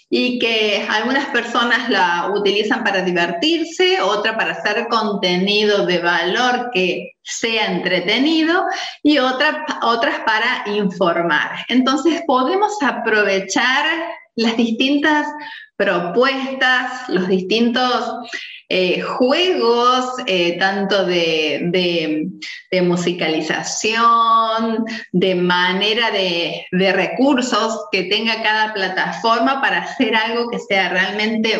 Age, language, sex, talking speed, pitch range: 30-49, Spanish, female, 95 wpm, 195-260 Hz